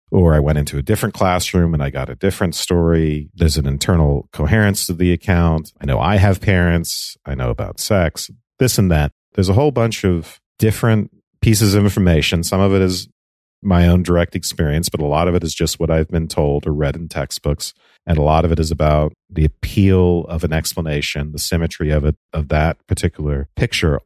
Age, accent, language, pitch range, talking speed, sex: 40-59, American, English, 75-95 Hz, 210 wpm, male